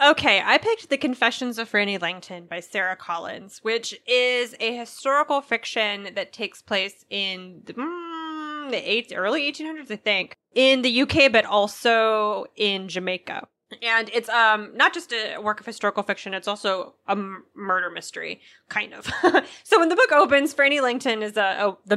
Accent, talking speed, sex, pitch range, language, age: American, 160 wpm, female, 190-235 Hz, English, 20-39